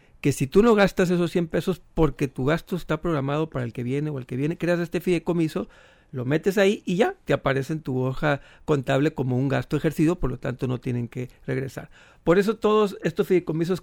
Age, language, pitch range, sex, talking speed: 50-69, Spanish, 135-170 Hz, male, 220 wpm